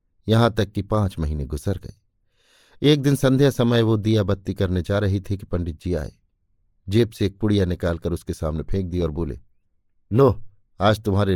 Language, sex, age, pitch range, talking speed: Hindi, male, 50-69, 90-110 Hz, 190 wpm